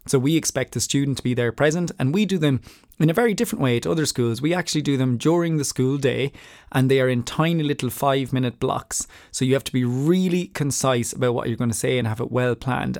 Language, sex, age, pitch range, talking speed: English, male, 20-39, 120-140 Hz, 260 wpm